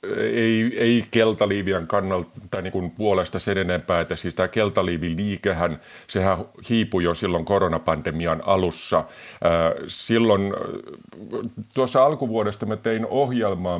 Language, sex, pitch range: Finnish, male, 85-100 Hz